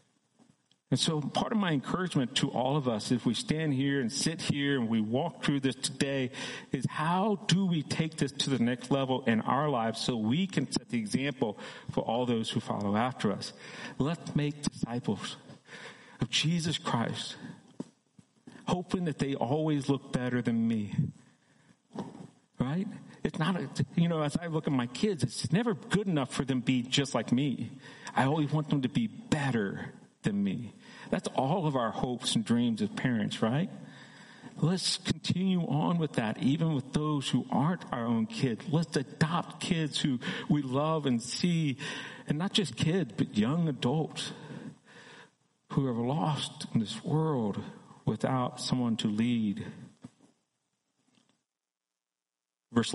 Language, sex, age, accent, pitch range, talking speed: English, male, 50-69, American, 125-180 Hz, 160 wpm